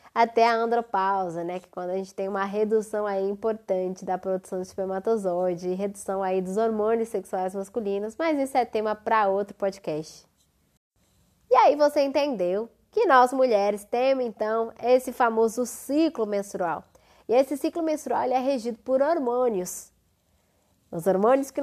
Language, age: Portuguese, 20-39